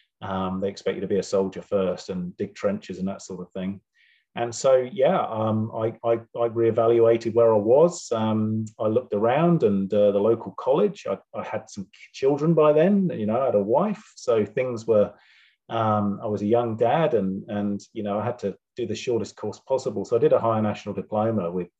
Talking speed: 215 wpm